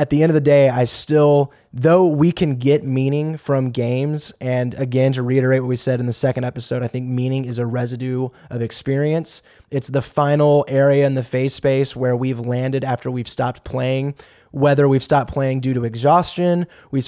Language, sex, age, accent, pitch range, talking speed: English, male, 20-39, American, 125-145 Hz, 200 wpm